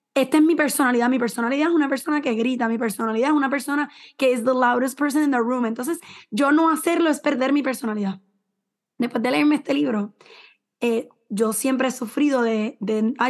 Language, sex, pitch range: English, female, 235-285 Hz